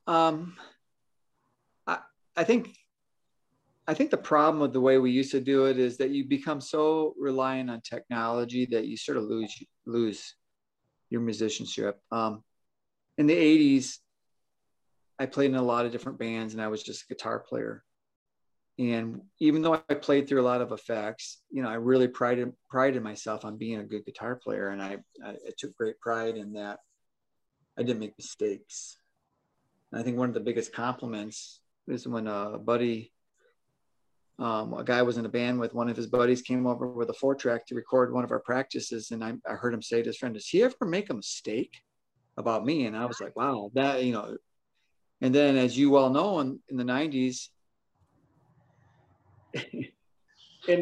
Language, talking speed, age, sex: English, 185 wpm, 40-59, male